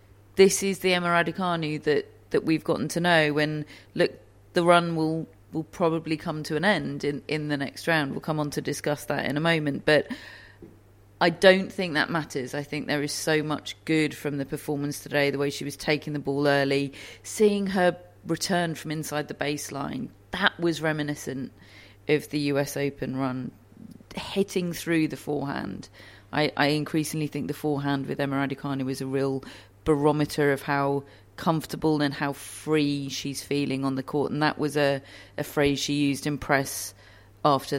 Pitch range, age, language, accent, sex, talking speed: 135-155 Hz, 30-49, English, British, female, 185 wpm